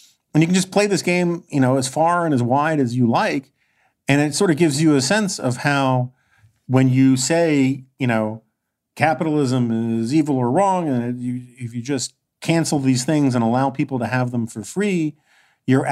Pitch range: 110-140 Hz